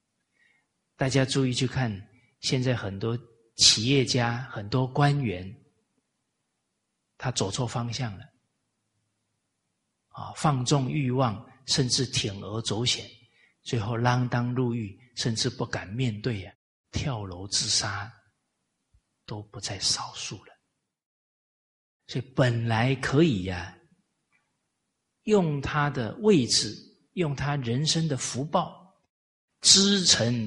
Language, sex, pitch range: Chinese, male, 105-135 Hz